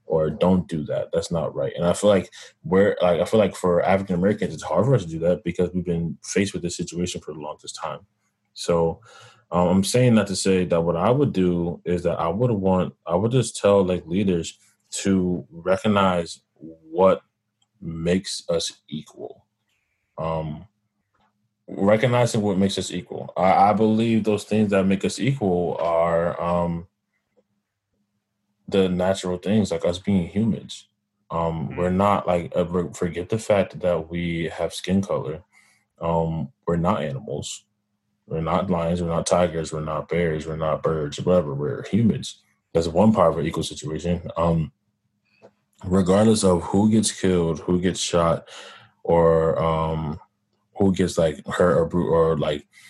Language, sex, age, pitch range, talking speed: English, male, 20-39, 85-105 Hz, 165 wpm